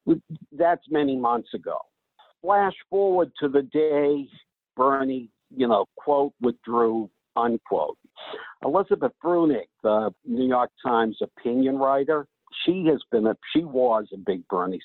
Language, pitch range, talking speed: English, 115-170 Hz, 130 wpm